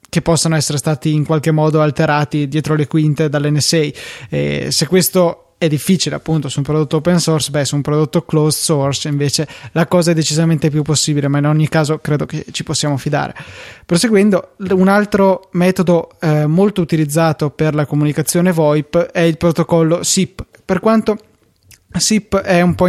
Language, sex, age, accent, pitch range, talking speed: Italian, male, 20-39, native, 150-175 Hz, 175 wpm